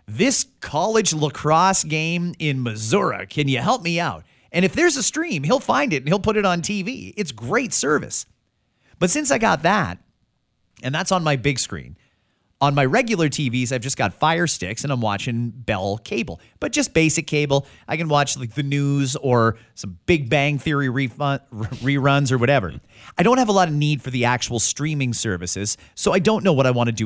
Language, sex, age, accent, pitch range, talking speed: English, male, 30-49, American, 115-170 Hz, 210 wpm